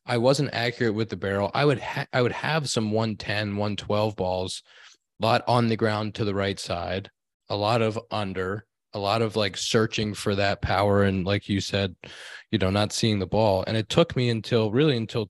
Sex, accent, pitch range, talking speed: male, American, 100-120 Hz, 210 wpm